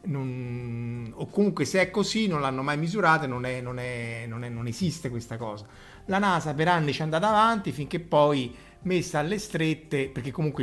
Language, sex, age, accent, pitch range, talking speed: Italian, male, 30-49, native, 125-165 Hz, 200 wpm